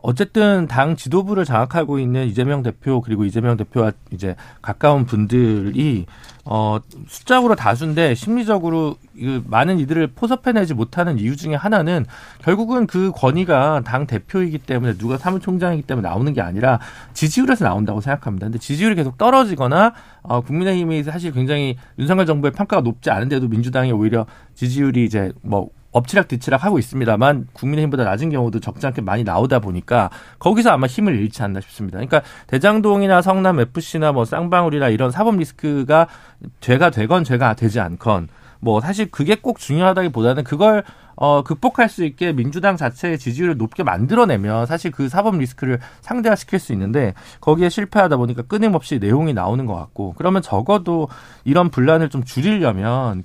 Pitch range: 120-175 Hz